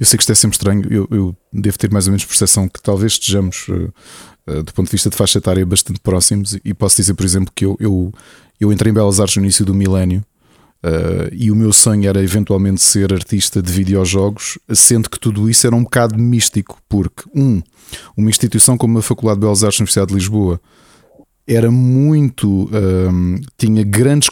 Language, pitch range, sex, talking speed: Portuguese, 95-115 Hz, male, 190 wpm